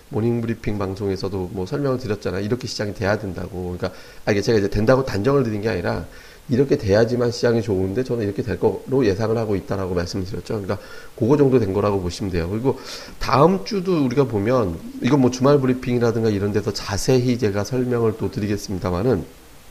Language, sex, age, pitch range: Korean, male, 40-59, 100-130 Hz